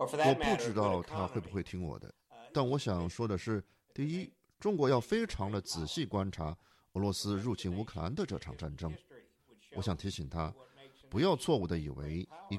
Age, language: 50-69, Chinese